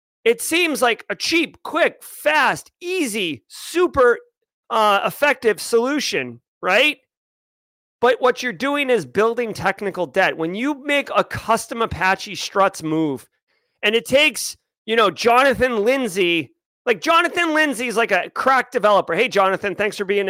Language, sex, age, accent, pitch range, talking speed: English, male, 30-49, American, 200-265 Hz, 145 wpm